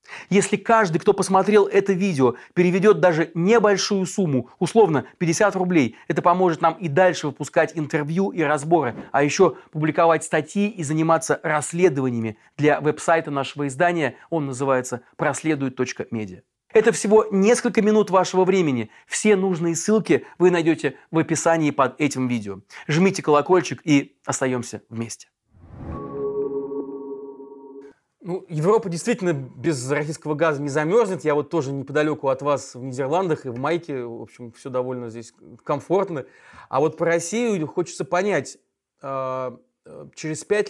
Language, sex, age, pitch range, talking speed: Russian, male, 30-49, 135-180 Hz, 135 wpm